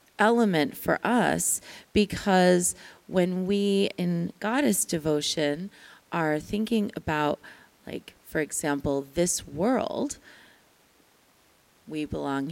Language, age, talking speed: English, 30-49, 90 wpm